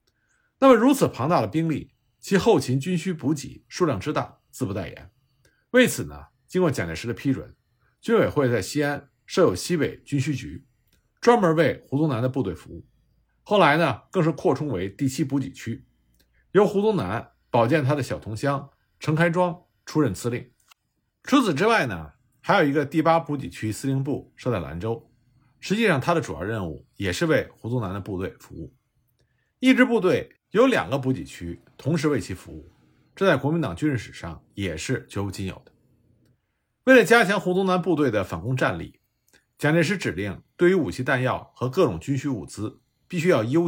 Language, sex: Chinese, male